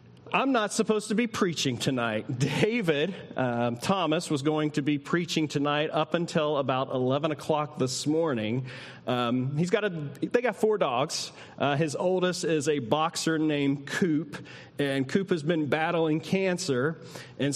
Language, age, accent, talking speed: English, 40-59, American, 155 wpm